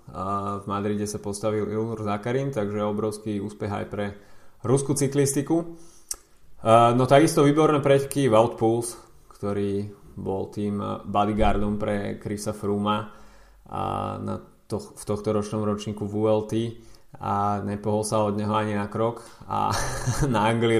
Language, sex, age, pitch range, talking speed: Slovak, male, 20-39, 100-115 Hz, 125 wpm